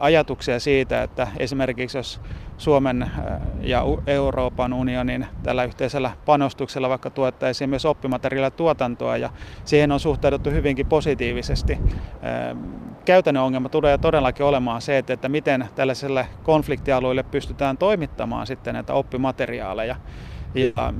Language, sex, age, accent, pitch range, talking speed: Finnish, male, 30-49, native, 125-140 Hz, 115 wpm